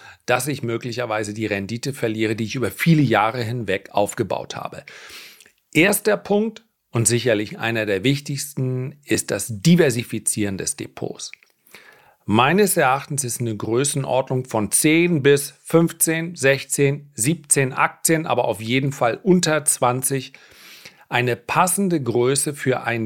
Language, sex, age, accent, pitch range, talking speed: German, male, 40-59, German, 115-155 Hz, 130 wpm